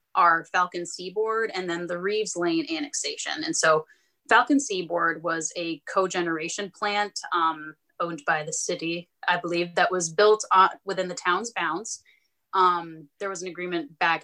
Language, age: English, 30-49